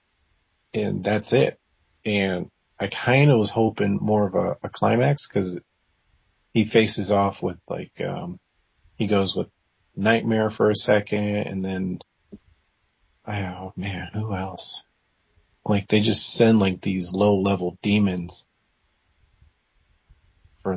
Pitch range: 95-120 Hz